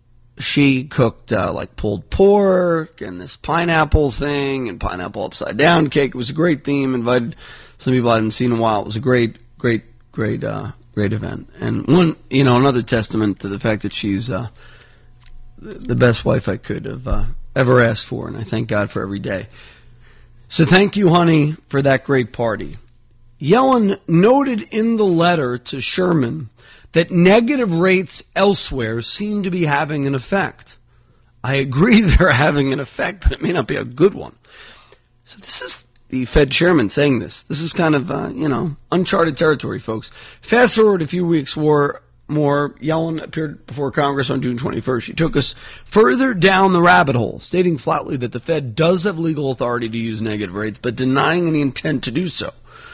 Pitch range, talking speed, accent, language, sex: 120-165 Hz, 185 wpm, American, English, male